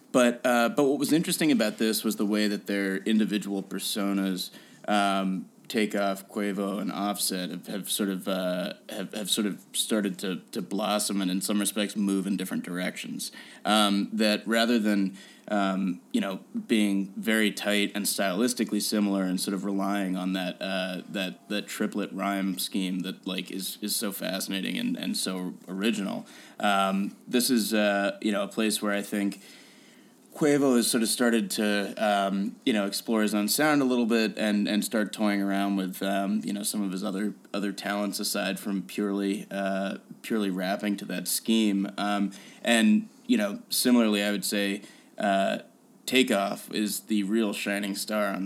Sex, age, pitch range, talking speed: male, 20-39, 100-110 Hz, 180 wpm